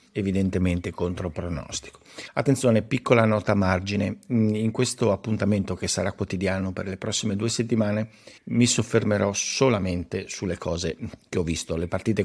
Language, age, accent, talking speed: Italian, 50-69, native, 140 wpm